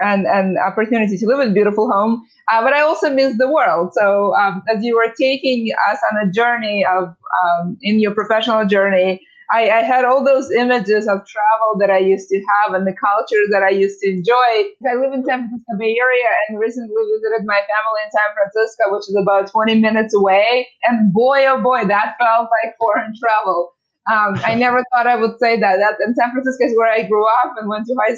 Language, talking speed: English, 220 wpm